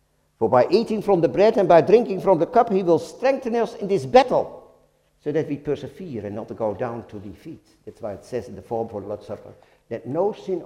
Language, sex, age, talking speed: English, male, 50-69, 240 wpm